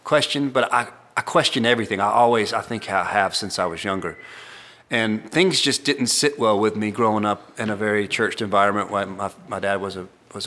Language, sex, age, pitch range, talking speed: English, male, 40-59, 110-140 Hz, 220 wpm